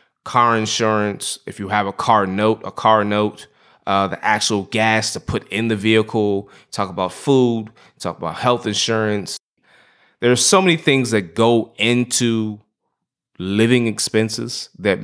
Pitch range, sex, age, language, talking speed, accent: 105-125 Hz, male, 20-39, English, 150 wpm, American